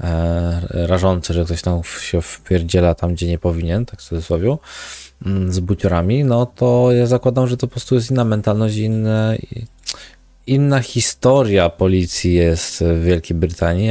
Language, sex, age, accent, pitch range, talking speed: Polish, male, 20-39, native, 85-110 Hz, 145 wpm